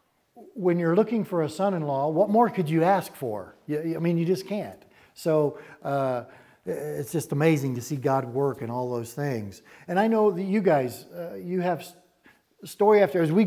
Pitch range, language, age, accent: 140-190 Hz, English, 50-69, American